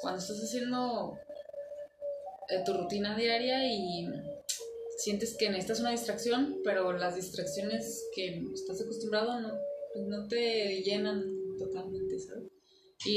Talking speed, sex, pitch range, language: 120 wpm, female, 190-290 Hz, Portuguese